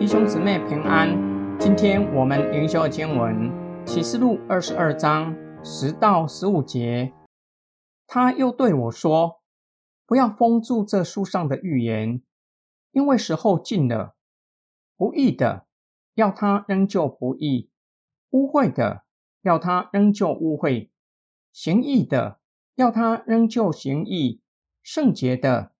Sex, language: male, Chinese